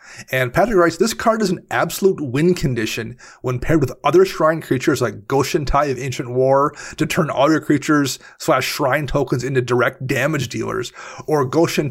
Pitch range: 130-155 Hz